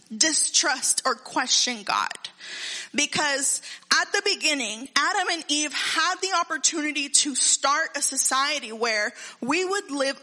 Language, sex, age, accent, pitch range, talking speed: English, female, 20-39, American, 265-335 Hz, 130 wpm